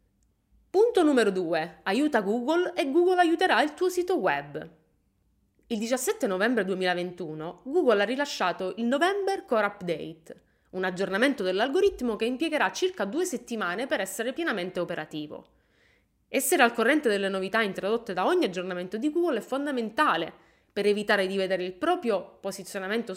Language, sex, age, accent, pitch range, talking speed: Italian, female, 20-39, native, 175-260 Hz, 140 wpm